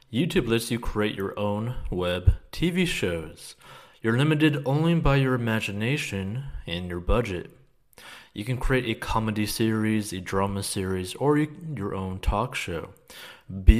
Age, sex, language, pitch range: 30-49, male, English, 95-125 Hz